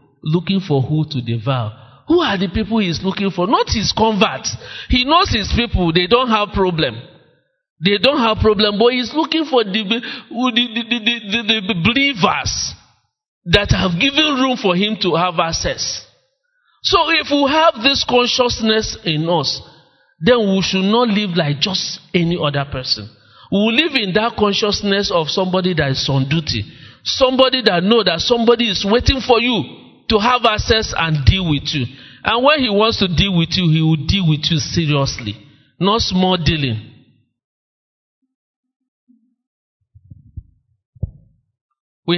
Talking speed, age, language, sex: 155 wpm, 50-69, English, male